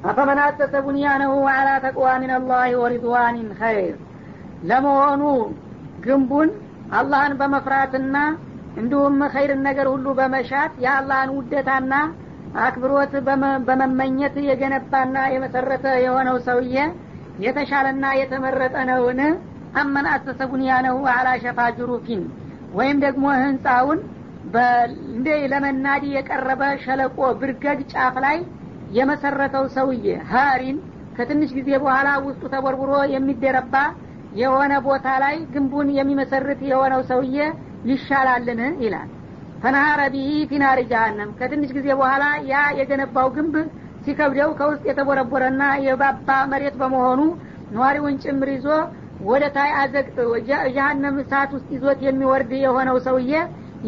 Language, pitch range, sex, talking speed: Amharic, 260-280 Hz, female, 95 wpm